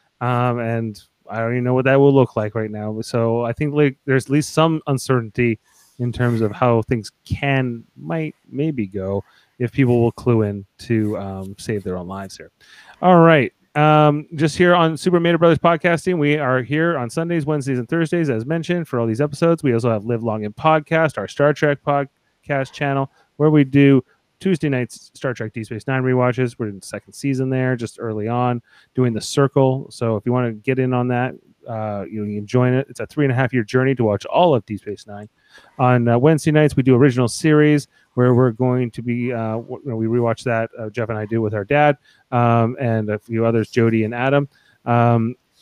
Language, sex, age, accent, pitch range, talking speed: English, male, 30-49, American, 115-145 Hz, 215 wpm